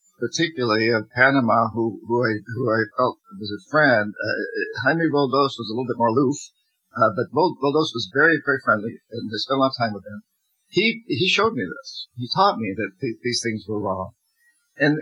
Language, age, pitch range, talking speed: English, 50-69, 115-155 Hz, 210 wpm